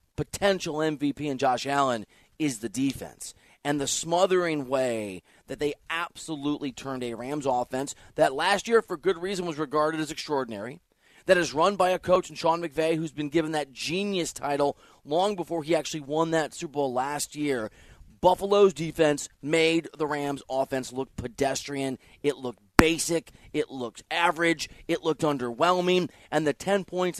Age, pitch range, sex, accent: 30-49, 135-175 Hz, male, American